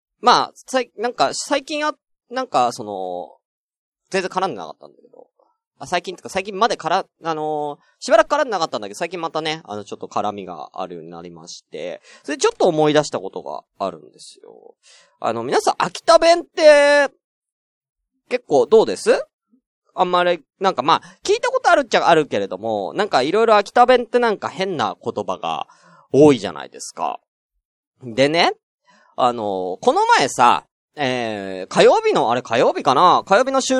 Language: Japanese